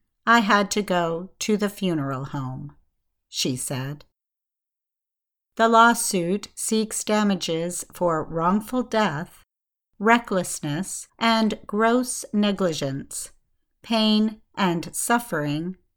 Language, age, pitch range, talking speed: English, 50-69, 175-220 Hz, 90 wpm